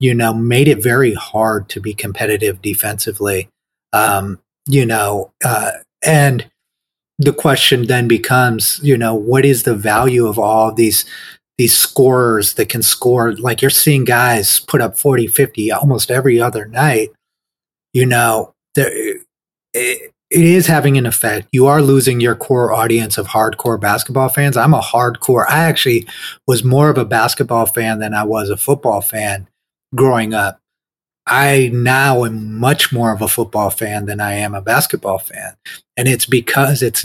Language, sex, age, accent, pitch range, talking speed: English, male, 30-49, American, 110-135 Hz, 165 wpm